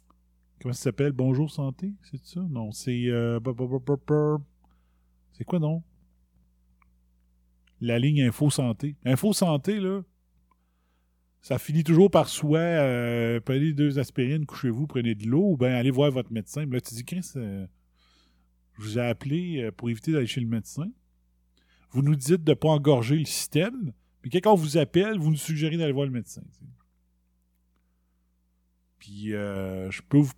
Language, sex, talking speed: French, male, 160 wpm